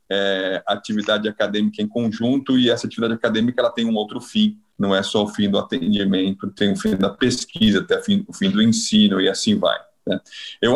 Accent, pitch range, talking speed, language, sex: Brazilian, 105-140 Hz, 200 wpm, Portuguese, male